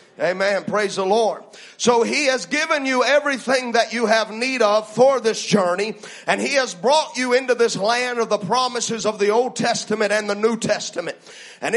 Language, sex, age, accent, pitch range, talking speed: English, male, 40-59, American, 215-255 Hz, 195 wpm